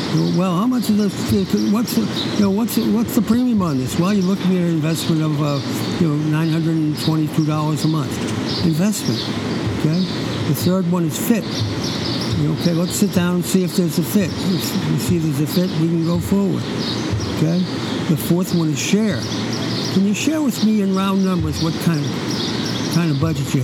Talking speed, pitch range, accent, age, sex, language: 200 wpm, 155-200 Hz, American, 60-79, male, English